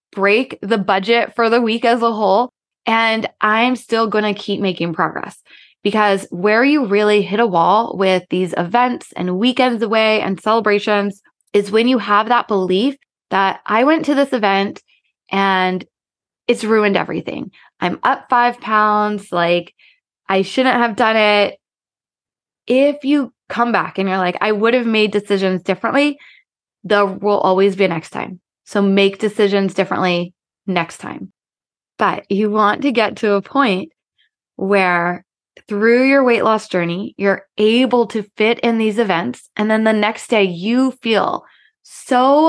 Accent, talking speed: American, 155 wpm